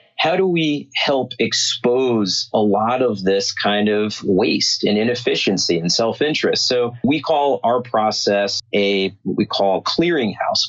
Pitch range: 105-135 Hz